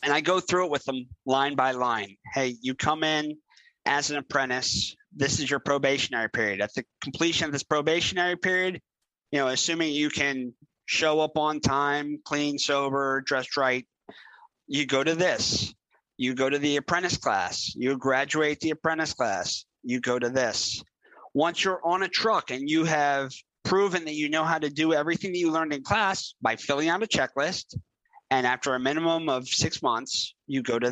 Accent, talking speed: American, 190 wpm